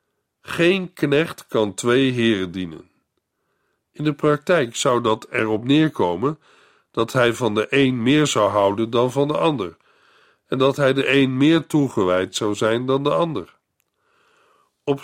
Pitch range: 115-165 Hz